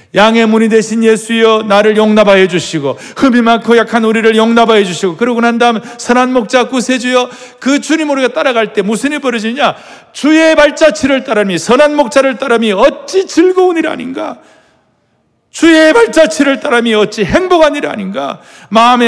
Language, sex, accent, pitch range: Korean, male, native, 175-250 Hz